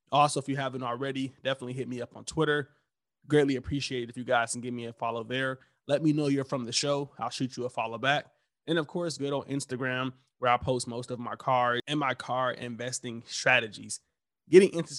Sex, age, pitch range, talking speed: male, 20-39, 120-140 Hz, 225 wpm